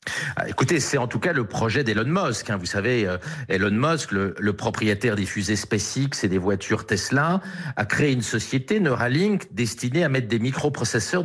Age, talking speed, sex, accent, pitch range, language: 50-69, 190 wpm, male, French, 110-155 Hz, French